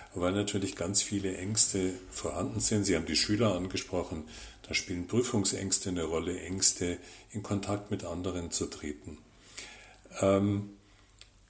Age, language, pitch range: 50-69, German, 90-105 Hz